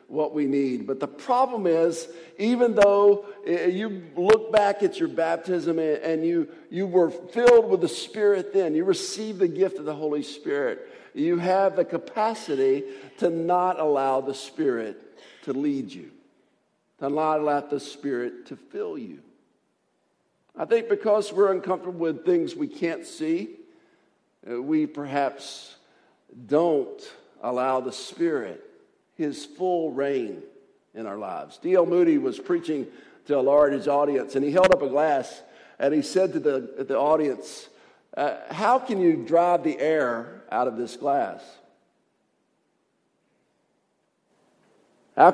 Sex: male